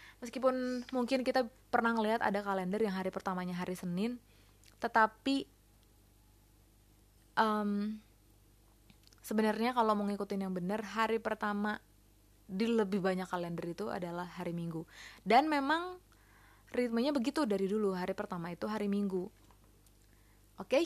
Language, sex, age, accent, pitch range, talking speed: Indonesian, female, 20-39, native, 185-245 Hz, 120 wpm